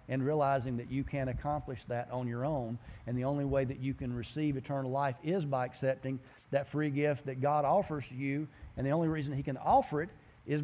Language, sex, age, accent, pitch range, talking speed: English, male, 40-59, American, 120-160 Hz, 220 wpm